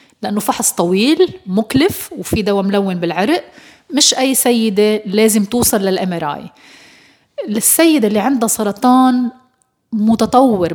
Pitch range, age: 195-250 Hz, 30-49